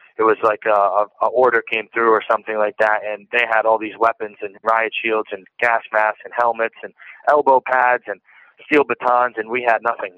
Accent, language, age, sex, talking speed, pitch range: American, English, 20-39, male, 210 wpm, 105-115 Hz